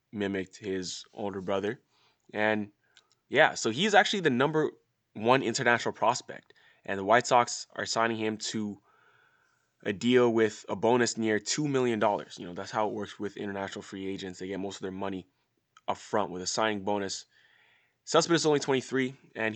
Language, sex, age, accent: English, male, 20-39, American